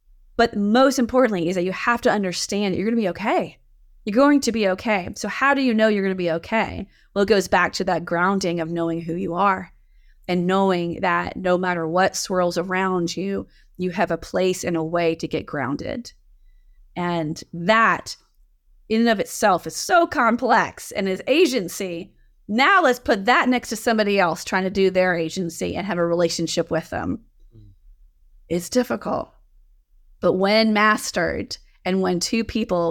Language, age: English, 30-49